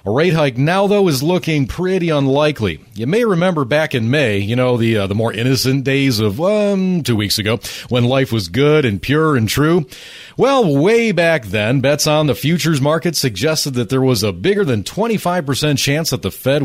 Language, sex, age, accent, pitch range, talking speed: English, male, 40-59, American, 115-160 Hz, 205 wpm